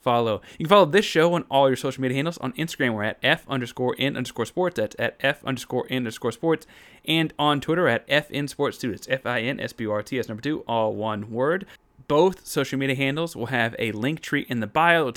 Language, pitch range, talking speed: English, 115-145 Hz, 250 wpm